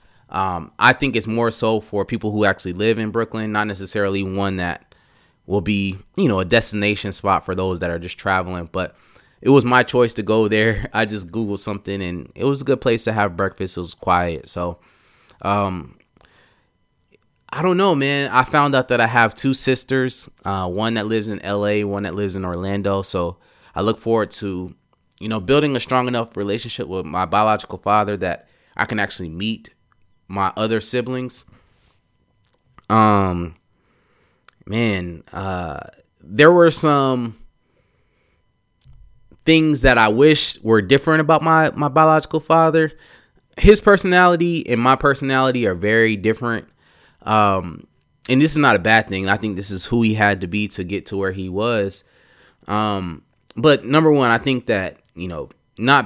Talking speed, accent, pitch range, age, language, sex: 170 wpm, American, 95-125 Hz, 20-39, English, male